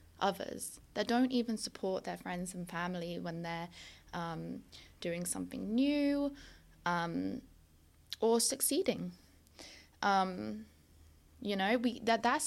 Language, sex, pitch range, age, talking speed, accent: English, female, 170-230 Hz, 20-39, 115 wpm, British